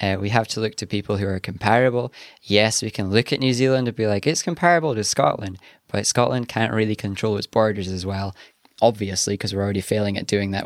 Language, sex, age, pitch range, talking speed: English, male, 20-39, 105-130 Hz, 230 wpm